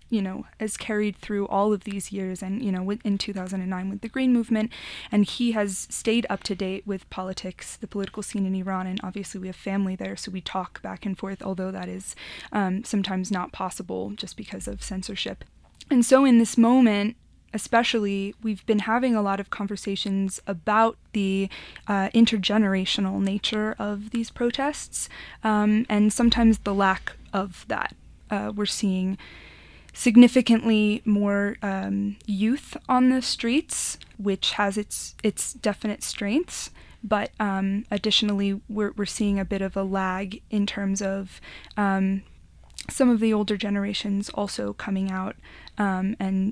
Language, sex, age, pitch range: English, female, 20-39, 195-215 Hz